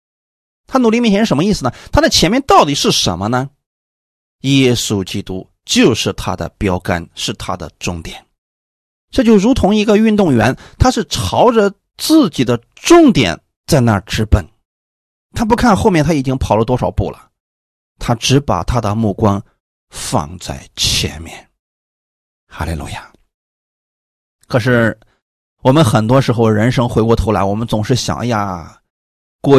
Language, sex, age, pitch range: Chinese, male, 30-49, 95-140 Hz